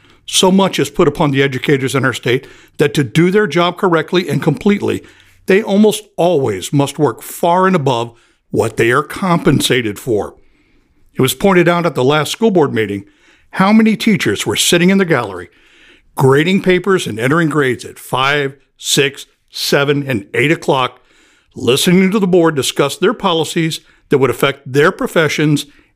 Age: 60-79